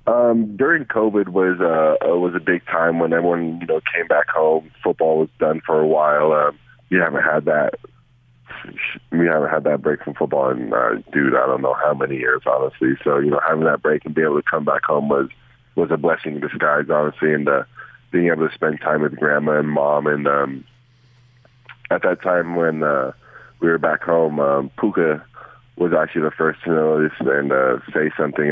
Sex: male